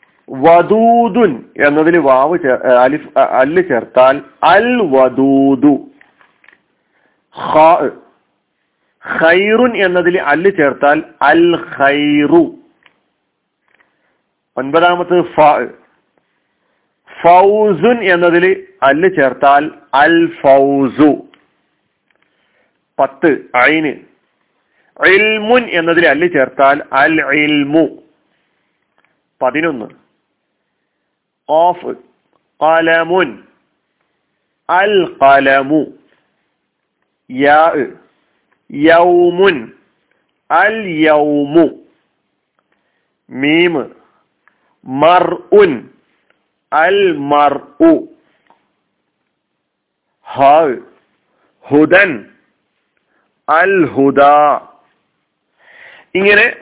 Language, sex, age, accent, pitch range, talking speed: Malayalam, male, 50-69, native, 145-205 Hz, 35 wpm